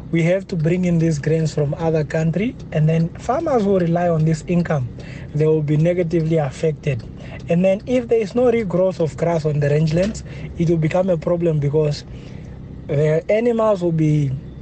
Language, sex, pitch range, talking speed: English, male, 155-185 Hz, 185 wpm